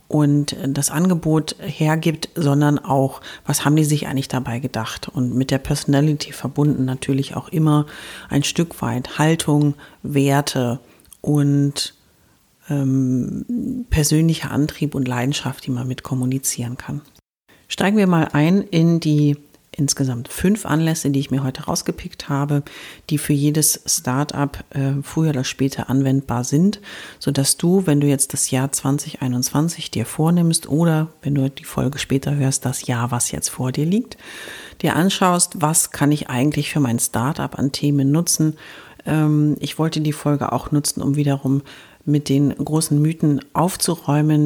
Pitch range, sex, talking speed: 135-155 Hz, female, 155 wpm